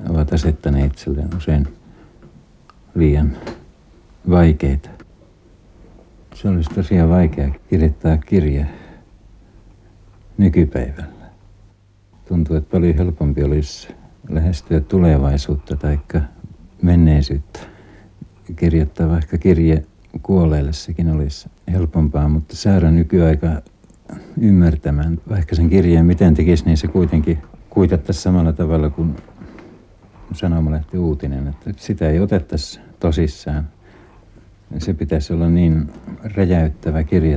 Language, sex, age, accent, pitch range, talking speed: Finnish, male, 60-79, native, 75-95 Hz, 90 wpm